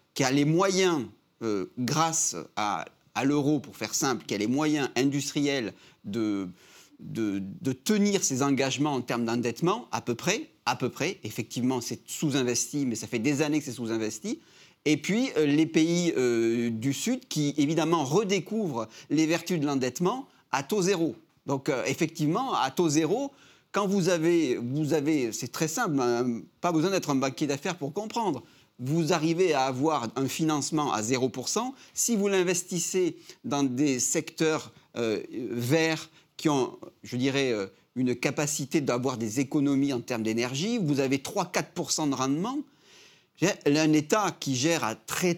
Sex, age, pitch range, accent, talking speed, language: male, 30-49, 130-170 Hz, French, 155 wpm, French